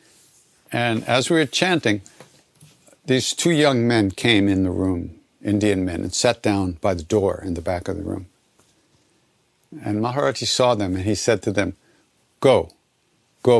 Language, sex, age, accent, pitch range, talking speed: English, male, 60-79, American, 95-120 Hz, 170 wpm